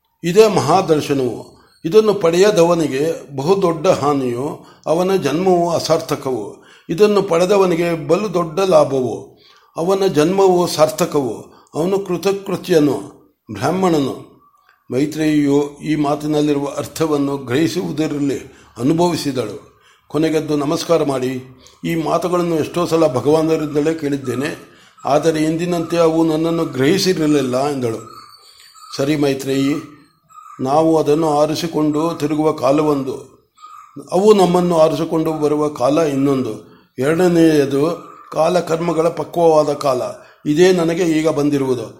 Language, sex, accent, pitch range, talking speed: Kannada, male, native, 145-175 Hz, 85 wpm